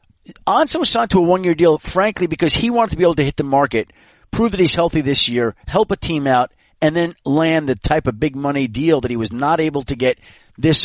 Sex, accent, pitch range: male, American, 130-170 Hz